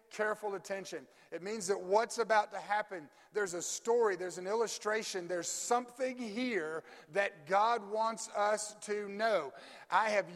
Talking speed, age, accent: 150 wpm, 50-69, American